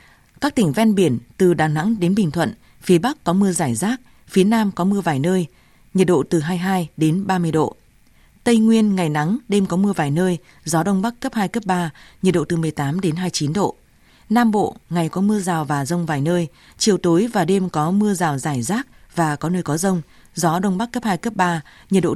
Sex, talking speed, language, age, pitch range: female, 230 wpm, Vietnamese, 20-39, 165-200 Hz